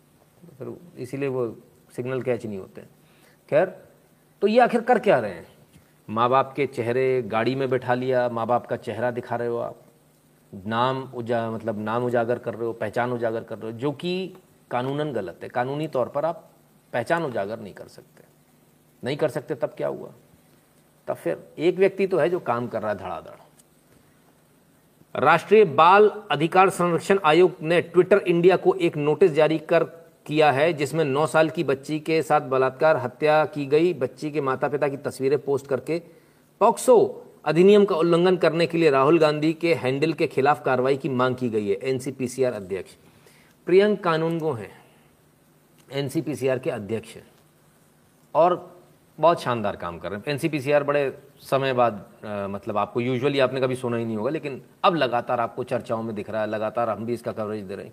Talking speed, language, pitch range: 180 wpm, Hindi, 120-165 Hz